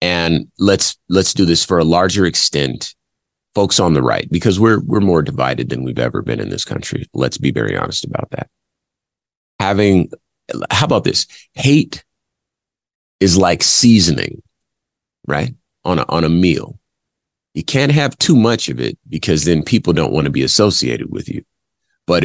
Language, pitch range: English, 80-100 Hz